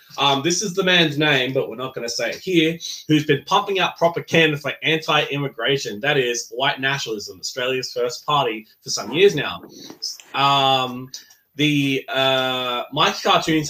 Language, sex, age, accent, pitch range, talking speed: English, male, 20-39, Australian, 120-160 Hz, 165 wpm